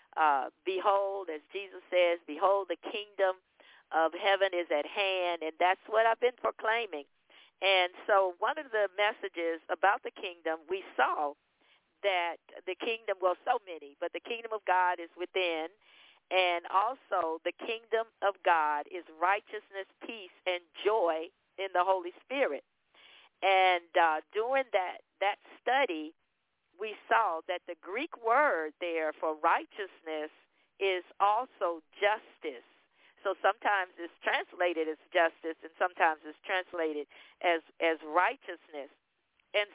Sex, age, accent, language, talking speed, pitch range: female, 50-69, American, English, 135 wpm, 170-205 Hz